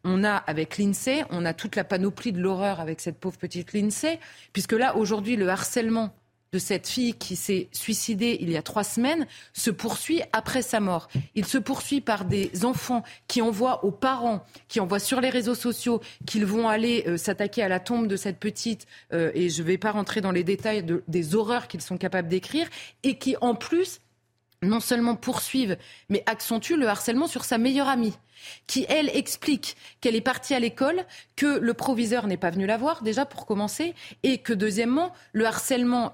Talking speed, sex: 200 wpm, female